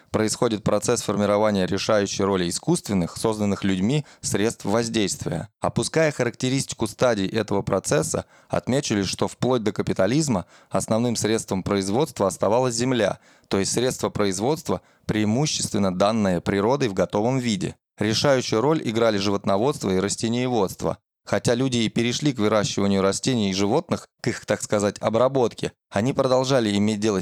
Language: Russian